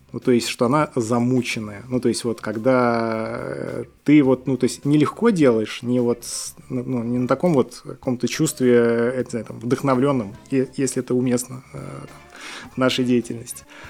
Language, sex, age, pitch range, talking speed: Russian, male, 20-39, 115-135 Hz, 160 wpm